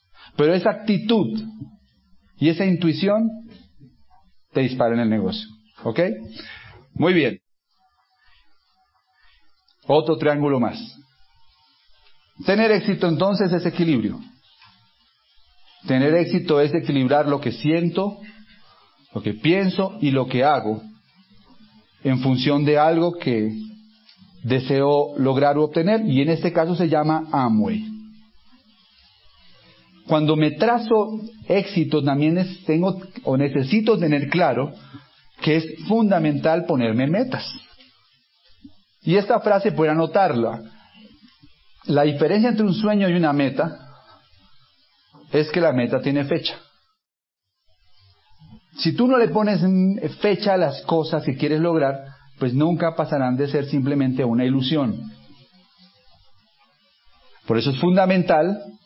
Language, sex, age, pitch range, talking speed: Spanish, male, 40-59, 140-200 Hz, 110 wpm